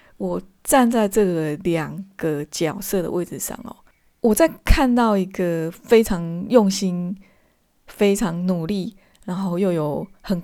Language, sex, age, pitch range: Chinese, female, 20-39, 180-220 Hz